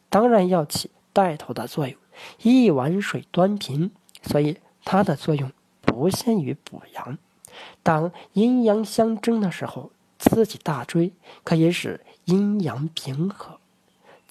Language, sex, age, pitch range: Chinese, male, 40-59, 155-205 Hz